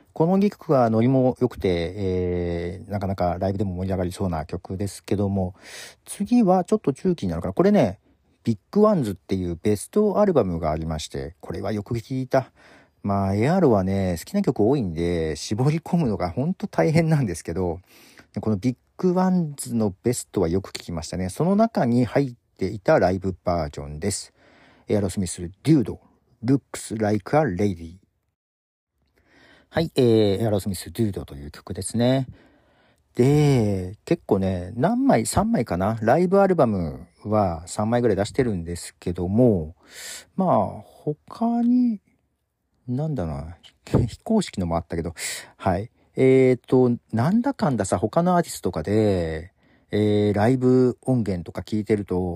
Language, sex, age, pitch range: Japanese, male, 50-69, 90-140 Hz